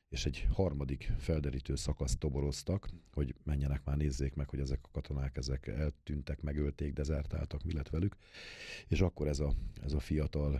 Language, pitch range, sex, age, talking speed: Hungarian, 70-80 Hz, male, 40-59, 155 wpm